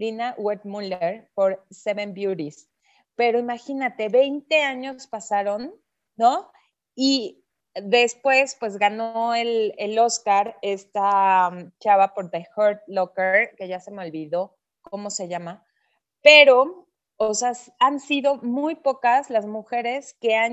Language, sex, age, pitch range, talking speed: Spanish, female, 30-49, 190-245 Hz, 125 wpm